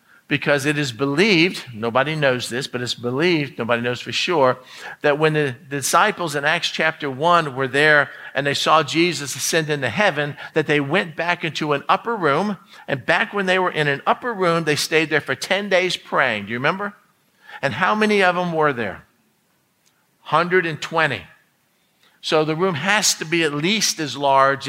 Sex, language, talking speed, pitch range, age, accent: male, English, 185 wpm, 140-185 Hz, 50-69, American